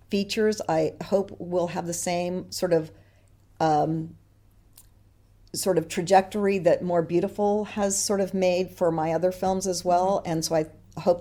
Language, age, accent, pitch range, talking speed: English, 50-69, American, 155-185 Hz, 160 wpm